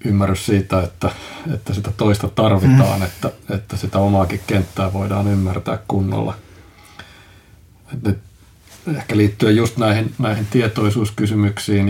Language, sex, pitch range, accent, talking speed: Finnish, male, 95-105 Hz, native, 110 wpm